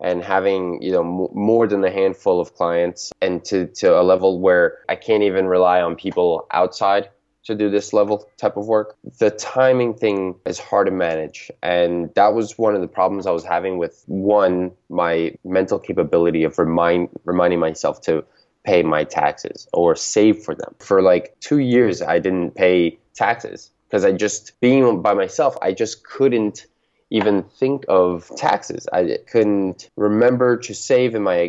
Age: 20-39